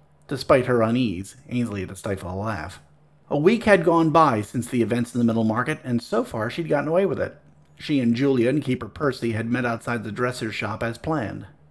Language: English